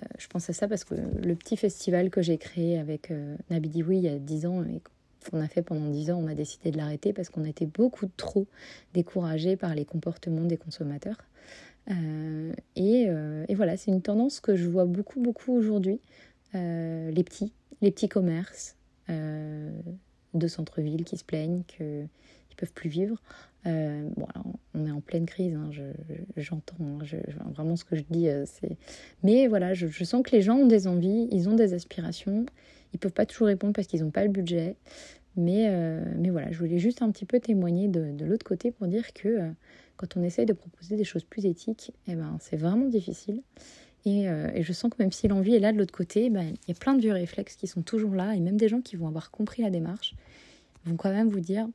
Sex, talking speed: female, 225 wpm